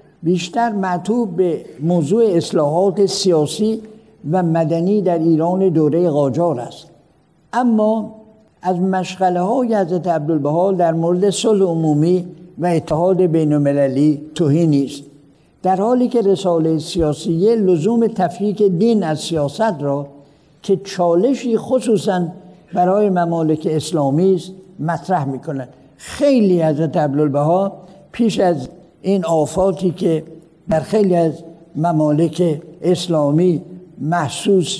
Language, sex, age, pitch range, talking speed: Persian, male, 60-79, 155-195 Hz, 110 wpm